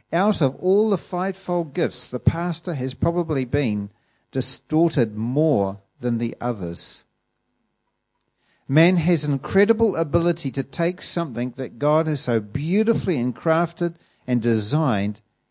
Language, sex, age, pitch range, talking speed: English, male, 50-69, 120-175 Hz, 125 wpm